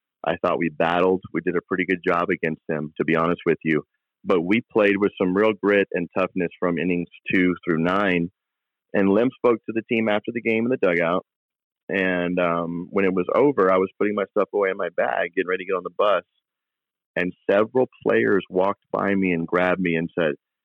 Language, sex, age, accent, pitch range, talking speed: English, male, 40-59, American, 85-110 Hz, 220 wpm